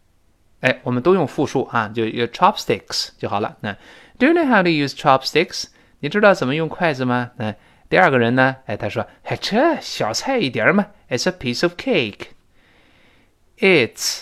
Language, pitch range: Chinese, 110-165 Hz